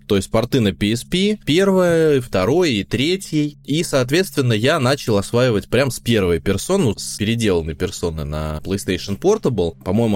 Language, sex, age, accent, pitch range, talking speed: Russian, male, 20-39, native, 95-130 Hz, 150 wpm